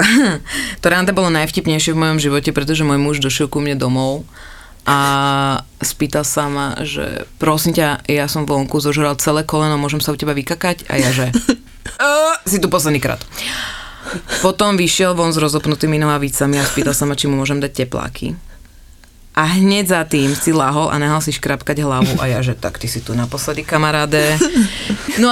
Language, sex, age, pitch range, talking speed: Slovak, female, 30-49, 145-195 Hz, 180 wpm